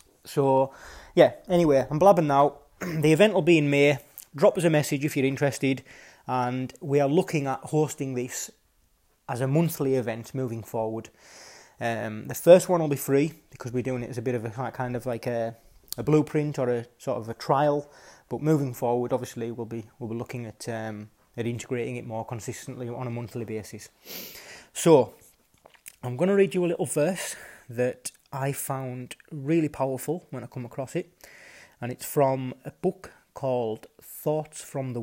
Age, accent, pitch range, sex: 20-39, British, 120-150 Hz, male